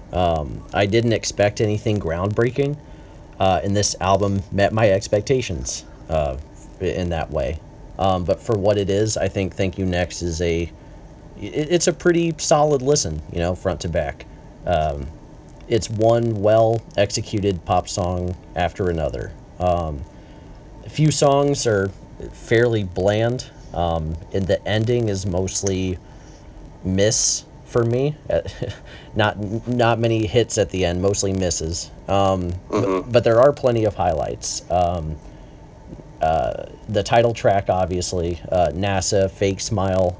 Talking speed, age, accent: 135 wpm, 30-49, American